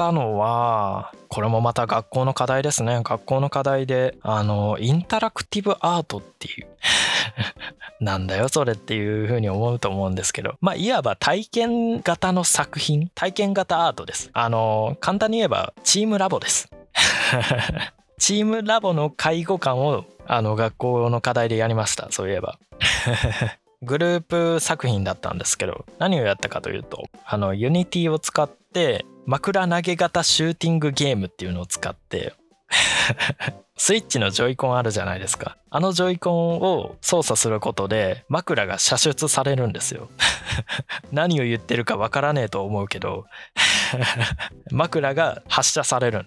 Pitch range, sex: 110-165 Hz, male